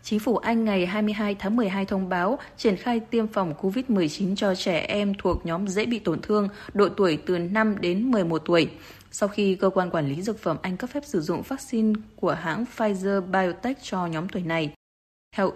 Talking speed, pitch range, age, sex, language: 200 wpm, 175-215 Hz, 20-39, female, Vietnamese